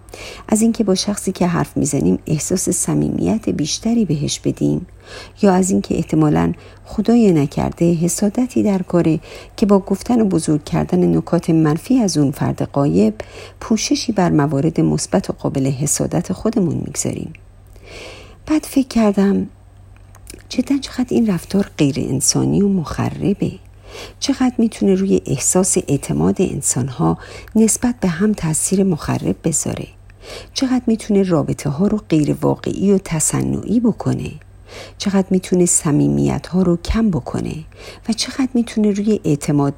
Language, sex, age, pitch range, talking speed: Persian, female, 50-69, 135-205 Hz, 135 wpm